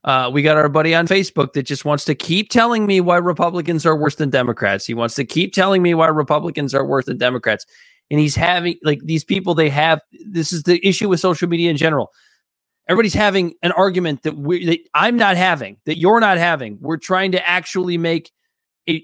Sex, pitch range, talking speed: male, 155-195 Hz, 220 wpm